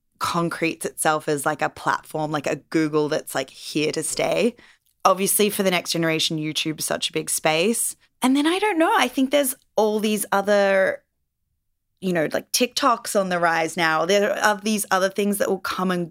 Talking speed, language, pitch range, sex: 200 wpm, English, 155-195 Hz, female